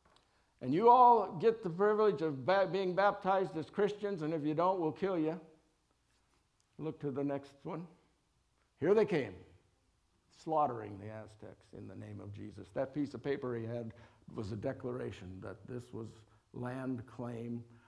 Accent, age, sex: American, 60-79, male